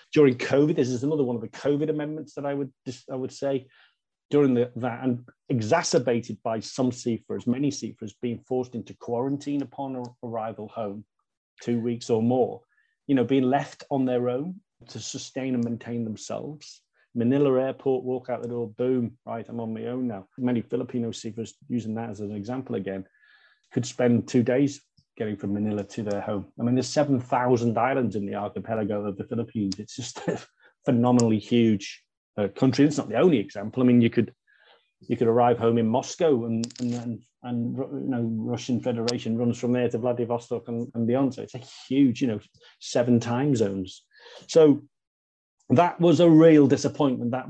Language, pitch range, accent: English, 110-130 Hz, British